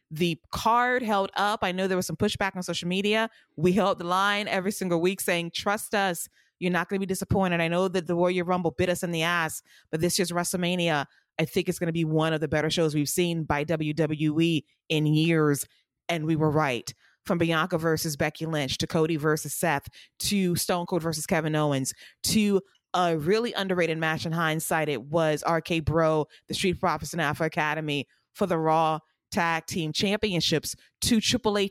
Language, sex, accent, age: English, female, American, 20-39